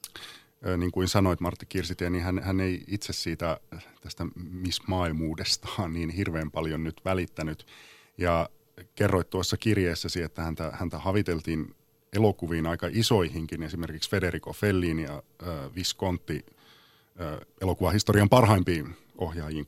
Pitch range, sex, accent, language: 80-100 Hz, male, native, Finnish